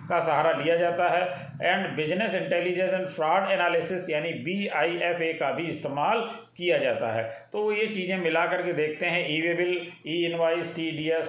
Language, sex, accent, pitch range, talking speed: Hindi, male, native, 155-185 Hz, 170 wpm